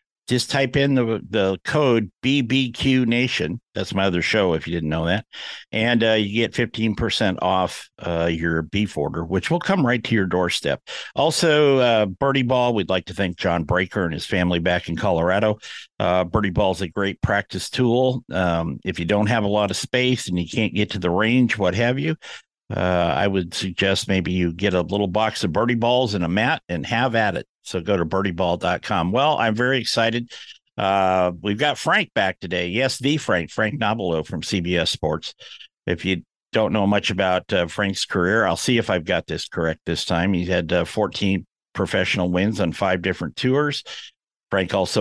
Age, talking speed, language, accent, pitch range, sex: 50-69, 195 wpm, English, American, 90-120 Hz, male